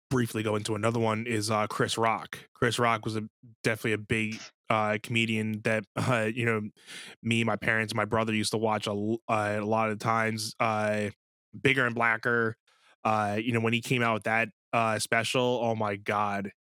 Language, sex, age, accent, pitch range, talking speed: English, male, 20-39, American, 110-130 Hz, 200 wpm